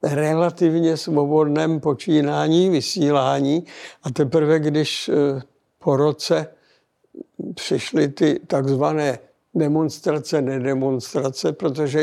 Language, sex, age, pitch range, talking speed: Czech, male, 60-79, 140-160 Hz, 75 wpm